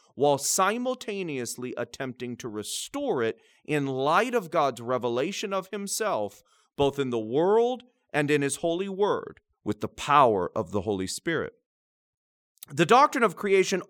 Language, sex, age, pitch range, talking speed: English, male, 40-59, 140-205 Hz, 145 wpm